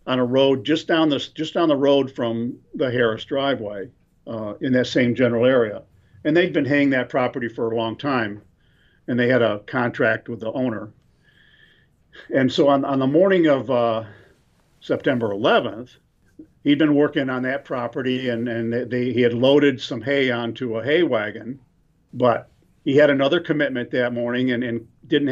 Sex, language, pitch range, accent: male, English, 115-140 Hz, American